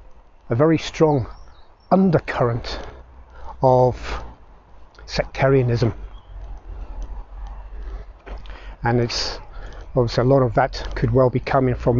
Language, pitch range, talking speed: English, 100-150 Hz, 90 wpm